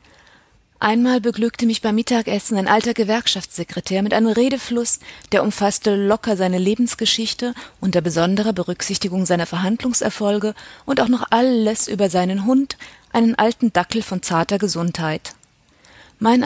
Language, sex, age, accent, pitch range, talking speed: German, female, 30-49, German, 185-230 Hz, 130 wpm